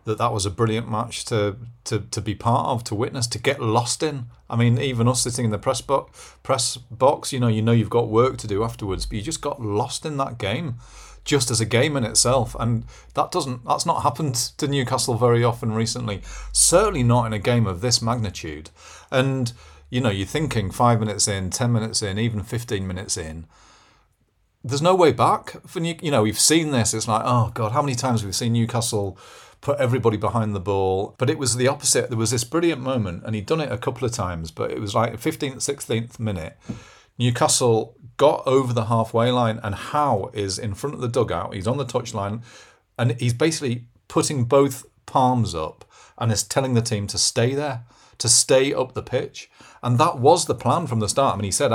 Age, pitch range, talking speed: 40-59, 105-130 Hz, 220 wpm